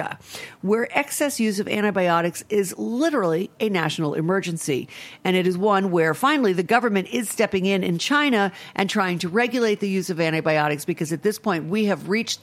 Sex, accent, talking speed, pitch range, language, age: female, American, 185 wpm, 165-225 Hz, English, 50-69